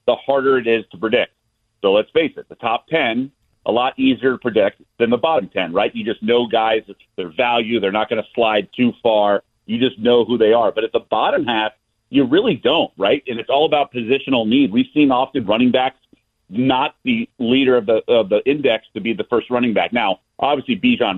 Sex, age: male, 40-59